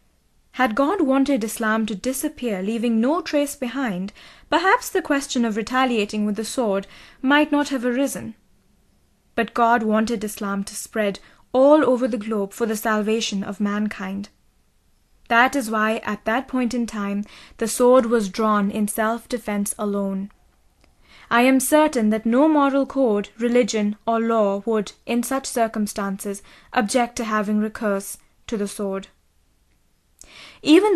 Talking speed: 145 wpm